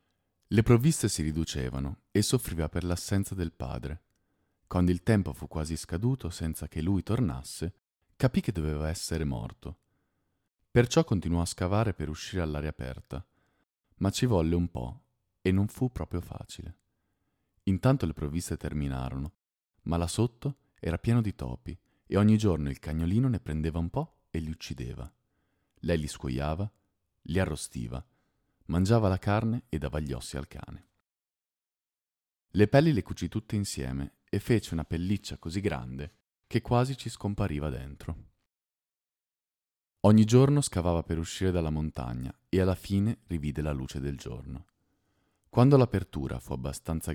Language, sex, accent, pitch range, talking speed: Italian, male, native, 75-105 Hz, 150 wpm